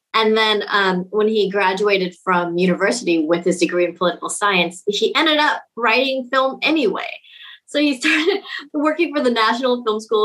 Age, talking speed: 30-49, 170 wpm